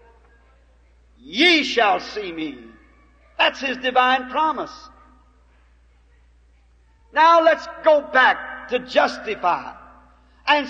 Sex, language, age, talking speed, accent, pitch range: male, English, 50-69, 85 wpm, American, 230-335 Hz